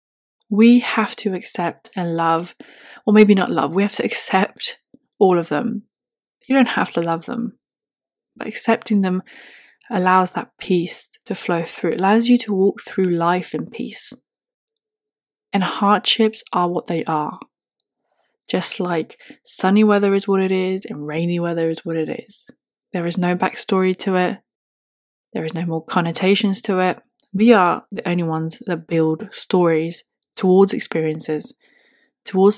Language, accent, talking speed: English, British, 160 wpm